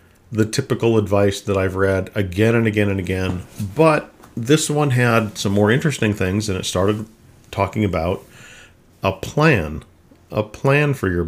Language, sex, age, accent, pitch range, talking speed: English, male, 50-69, American, 95-115 Hz, 160 wpm